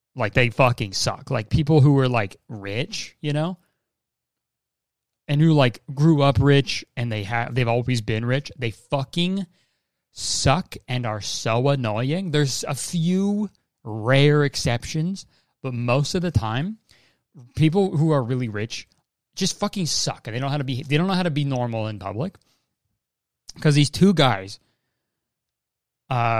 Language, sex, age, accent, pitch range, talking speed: English, male, 30-49, American, 115-160 Hz, 160 wpm